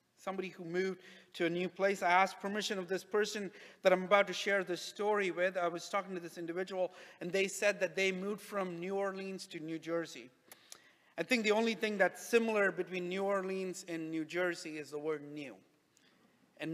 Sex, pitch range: male, 175-205 Hz